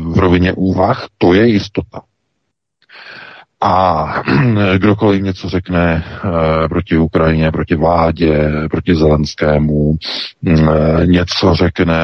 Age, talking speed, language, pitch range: 50-69, 100 wpm, Czech, 80-90 Hz